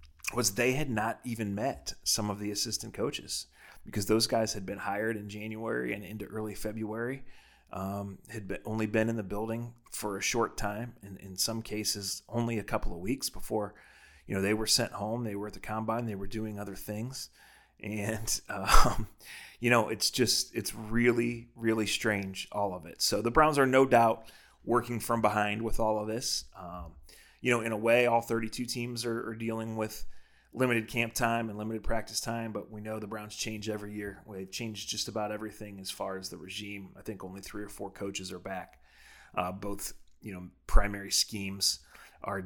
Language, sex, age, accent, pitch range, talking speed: English, male, 30-49, American, 100-115 Hz, 200 wpm